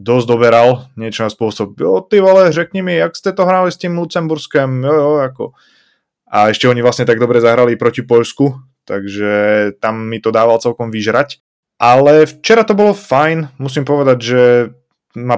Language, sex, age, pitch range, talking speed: Slovak, male, 20-39, 110-130 Hz, 175 wpm